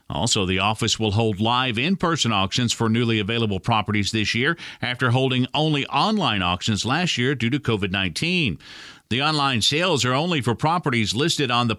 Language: English